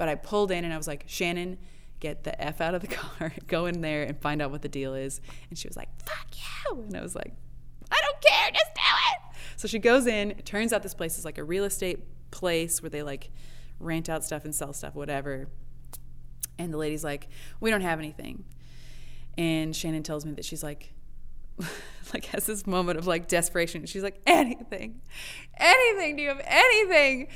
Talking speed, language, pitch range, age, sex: 215 wpm, English, 155-215 Hz, 20-39, female